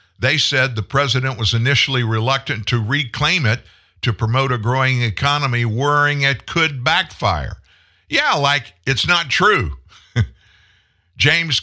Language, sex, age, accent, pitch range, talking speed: English, male, 50-69, American, 100-135 Hz, 130 wpm